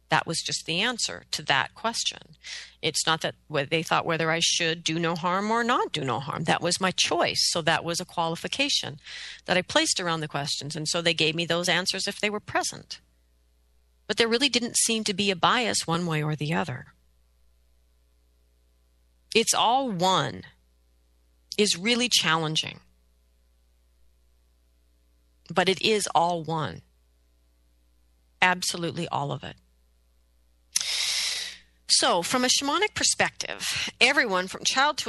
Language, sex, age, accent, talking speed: English, female, 40-59, American, 150 wpm